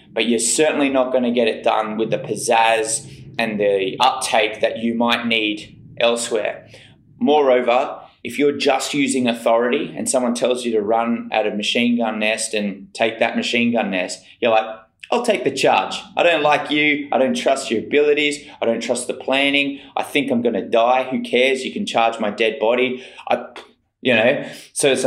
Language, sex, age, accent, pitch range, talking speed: English, male, 20-39, Australian, 110-130 Hz, 190 wpm